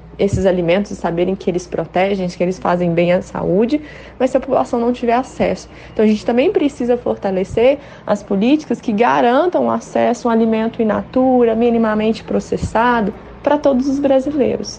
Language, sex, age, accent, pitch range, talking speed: Portuguese, female, 20-39, Brazilian, 200-250 Hz, 175 wpm